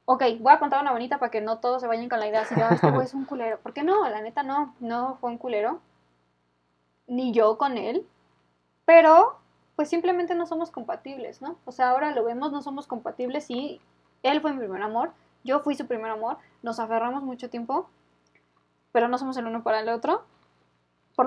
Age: 10-29